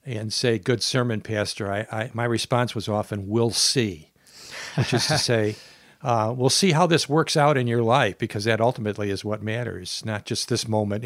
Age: 60-79